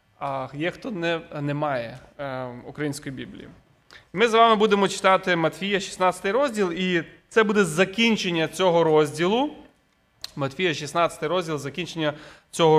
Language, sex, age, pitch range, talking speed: Ukrainian, male, 20-39, 165-220 Hz, 120 wpm